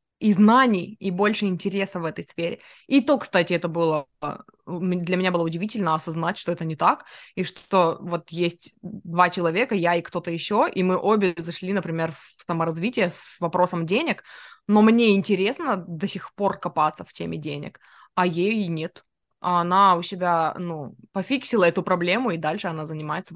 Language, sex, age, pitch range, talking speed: Russian, female, 20-39, 170-220 Hz, 170 wpm